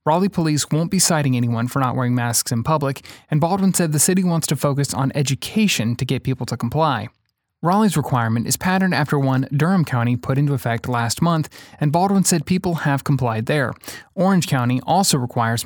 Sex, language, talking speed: male, English, 195 wpm